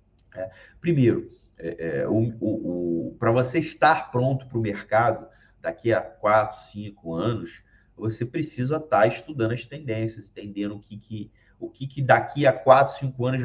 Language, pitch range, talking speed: Portuguese, 110-145 Hz, 150 wpm